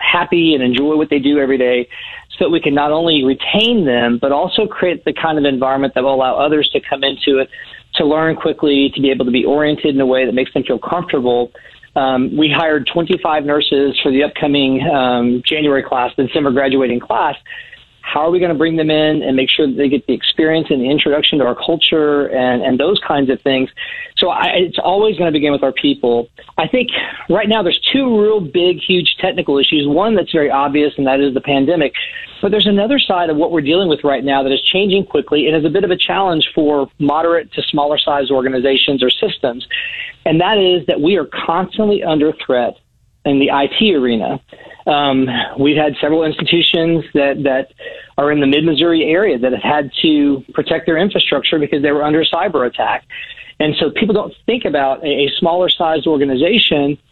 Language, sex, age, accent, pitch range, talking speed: English, male, 40-59, American, 140-170 Hz, 205 wpm